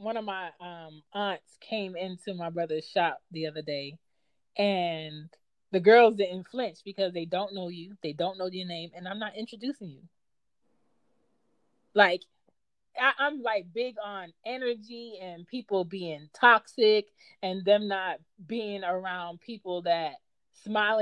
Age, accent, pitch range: 20-39, American, 175-225 Hz